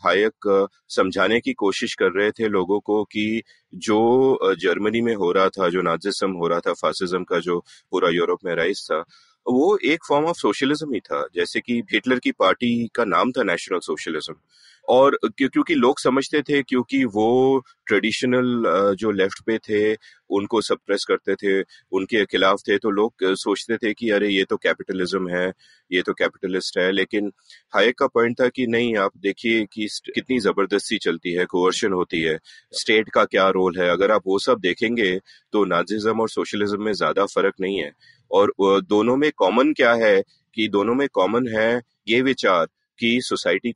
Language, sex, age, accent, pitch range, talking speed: Hindi, male, 30-49, native, 100-125 Hz, 180 wpm